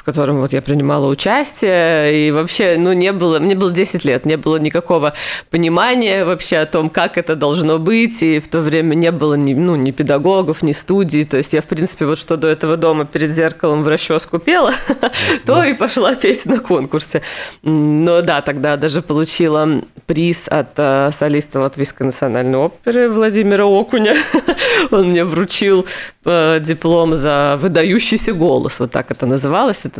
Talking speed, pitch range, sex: 165 wpm, 150-175 Hz, female